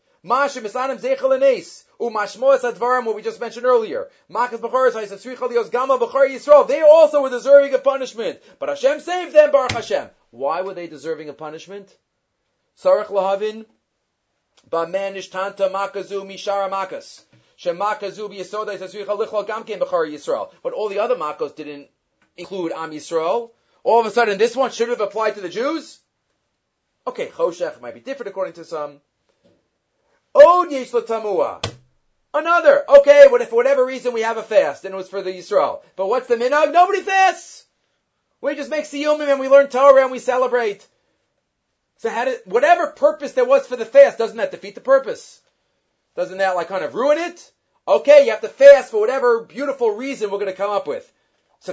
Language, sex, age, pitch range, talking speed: English, male, 30-49, 200-290 Hz, 180 wpm